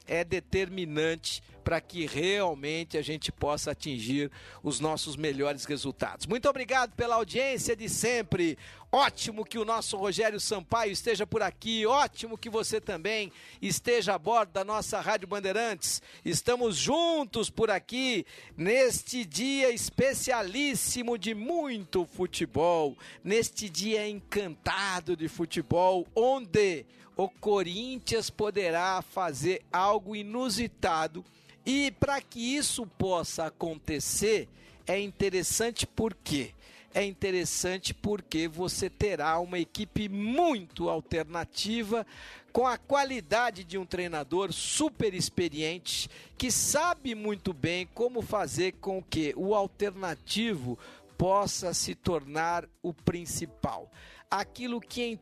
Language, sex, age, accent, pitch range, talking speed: Portuguese, male, 50-69, Brazilian, 170-225 Hz, 115 wpm